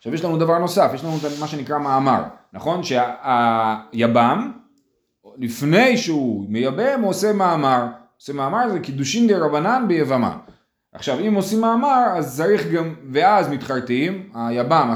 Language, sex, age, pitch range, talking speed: Hebrew, male, 30-49, 125-195 Hz, 140 wpm